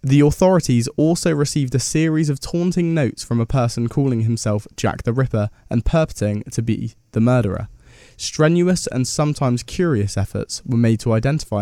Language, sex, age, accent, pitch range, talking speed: English, male, 20-39, British, 110-140 Hz, 165 wpm